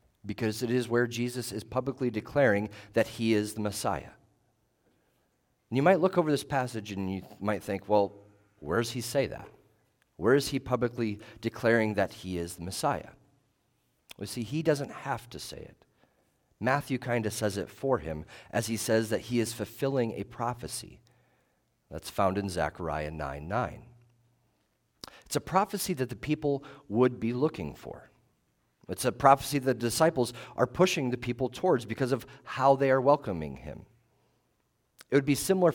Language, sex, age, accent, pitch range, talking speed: English, male, 40-59, American, 105-135 Hz, 165 wpm